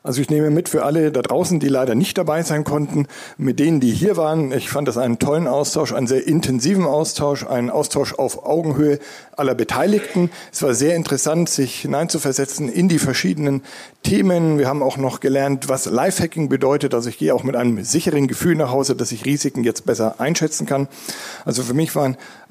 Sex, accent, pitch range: male, German, 125-155 Hz